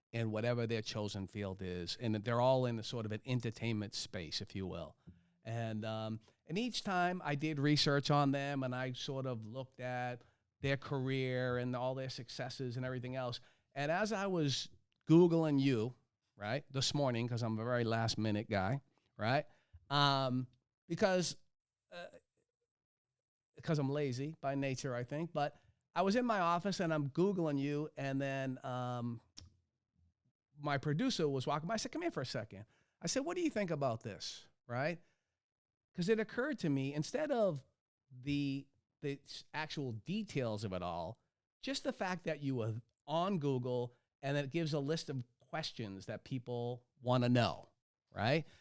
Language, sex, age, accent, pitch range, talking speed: English, male, 40-59, American, 120-165 Hz, 170 wpm